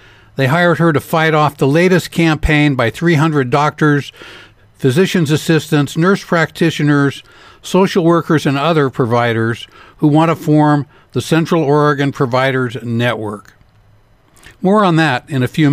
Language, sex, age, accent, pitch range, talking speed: English, male, 60-79, American, 115-160 Hz, 135 wpm